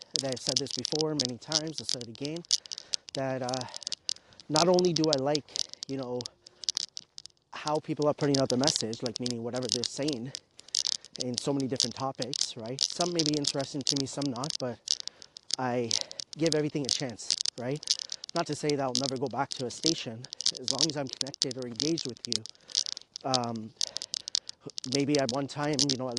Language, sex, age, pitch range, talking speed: English, male, 30-49, 130-155 Hz, 185 wpm